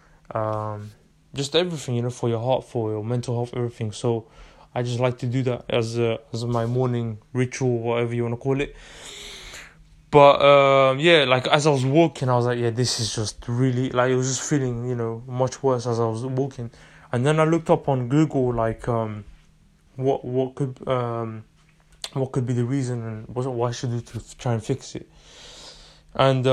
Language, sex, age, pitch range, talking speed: English, male, 20-39, 115-135 Hz, 205 wpm